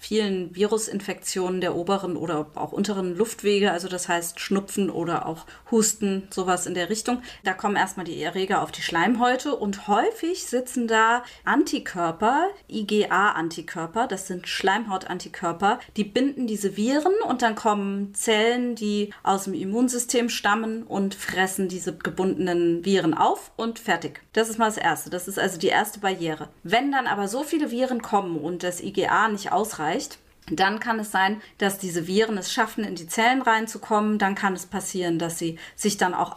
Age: 30-49